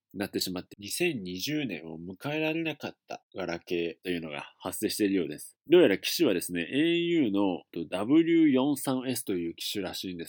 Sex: male